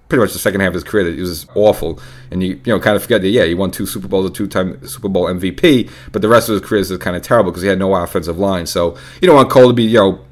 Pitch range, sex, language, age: 90-110 Hz, male, English, 30-49